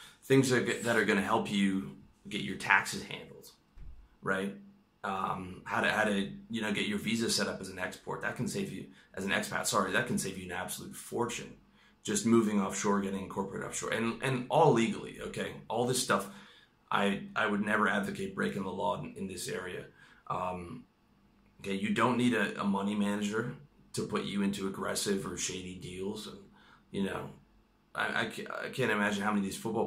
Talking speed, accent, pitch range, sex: 195 wpm, American, 95-115 Hz, male